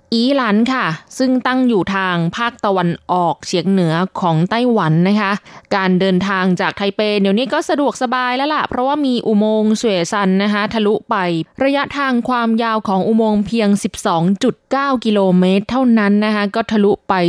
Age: 20-39